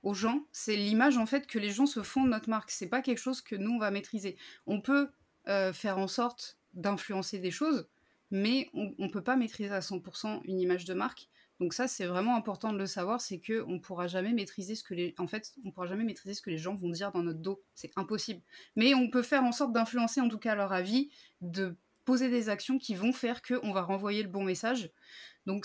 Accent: French